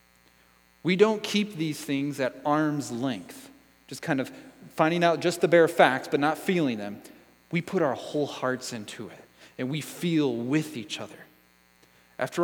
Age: 30-49